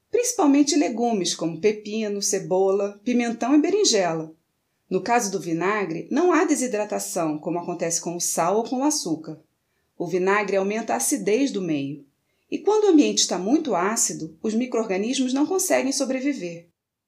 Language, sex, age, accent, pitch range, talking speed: Portuguese, female, 30-49, Brazilian, 180-275 Hz, 150 wpm